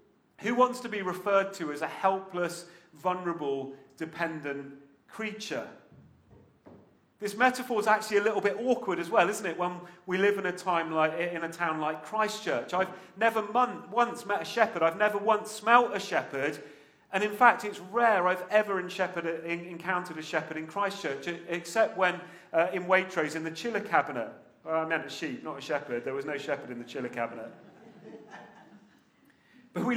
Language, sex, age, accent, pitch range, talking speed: English, male, 40-59, British, 165-220 Hz, 180 wpm